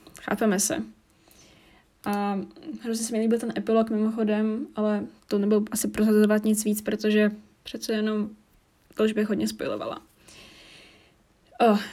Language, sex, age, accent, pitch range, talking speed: Czech, female, 10-29, native, 205-235 Hz, 120 wpm